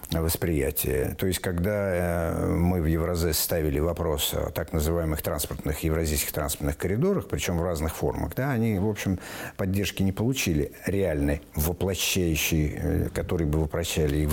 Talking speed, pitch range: 140 wpm, 80-105 Hz